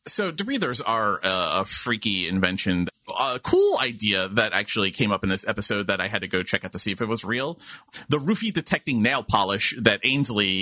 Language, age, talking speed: English, 30-49, 210 wpm